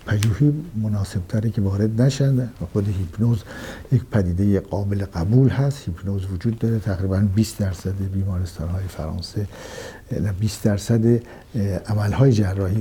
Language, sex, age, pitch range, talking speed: Persian, male, 60-79, 100-120 Hz, 130 wpm